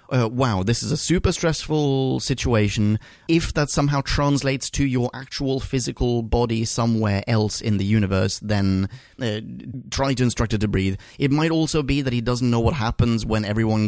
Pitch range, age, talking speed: 115-145 Hz, 30-49, 180 wpm